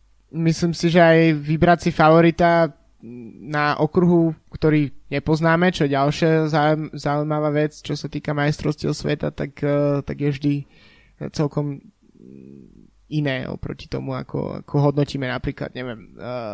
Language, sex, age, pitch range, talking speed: Slovak, male, 20-39, 140-155 Hz, 125 wpm